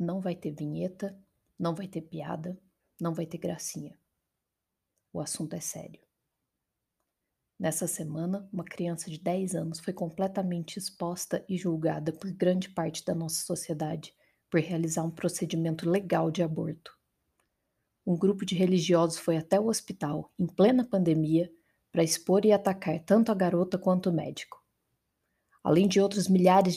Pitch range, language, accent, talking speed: 165-185 Hz, Portuguese, Brazilian, 150 wpm